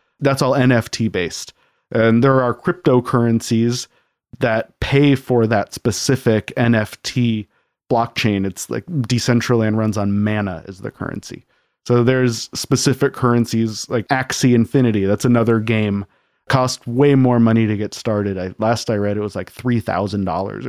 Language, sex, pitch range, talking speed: English, male, 110-130 Hz, 140 wpm